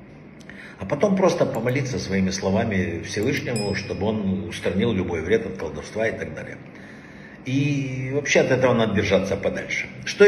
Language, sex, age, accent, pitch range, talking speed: Russian, male, 50-69, native, 105-145 Hz, 145 wpm